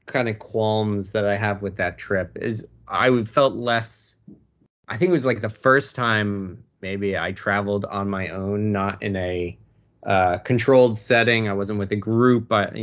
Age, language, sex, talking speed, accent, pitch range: 20-39, English, male, 190 wpm, American, 95-110 Hz